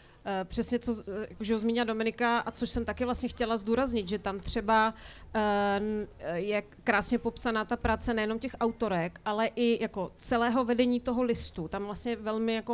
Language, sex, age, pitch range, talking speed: Czech, female, 30-49, 215-230 Hz, 165 wpm